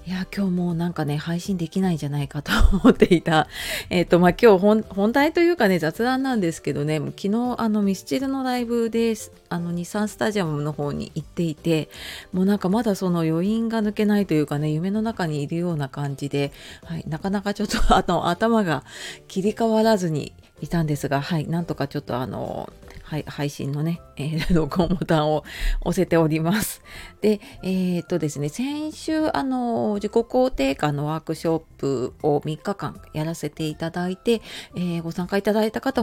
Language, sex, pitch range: Japanese, female, 155-210 Hz